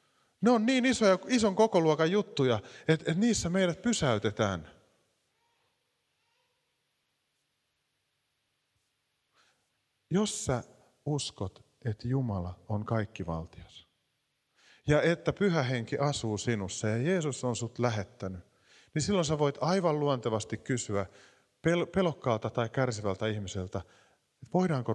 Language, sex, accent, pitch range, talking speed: Finnish, male, native, 120-190 Hz, 110 wpm